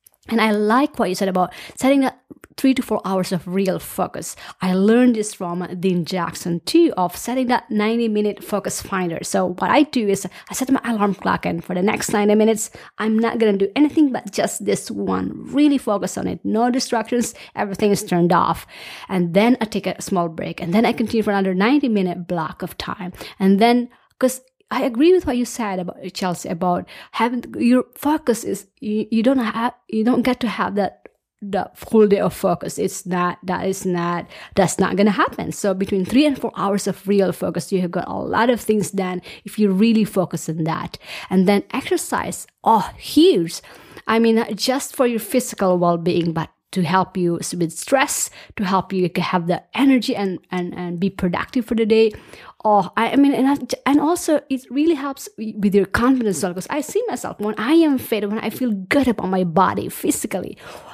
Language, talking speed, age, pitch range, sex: English, 205 wpm, 20-39, 185-245 Hz, female